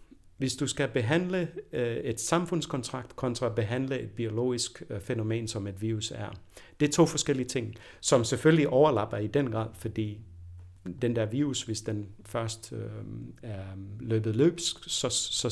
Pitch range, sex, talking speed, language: 110-135 Hz, male, 145 wpm, Danish